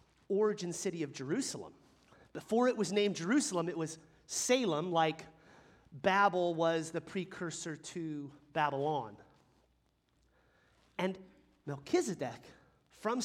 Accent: American